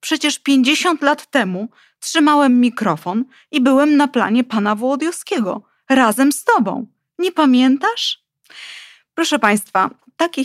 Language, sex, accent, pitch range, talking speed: Polish, female, native, 180-245 Hz, 115 wpm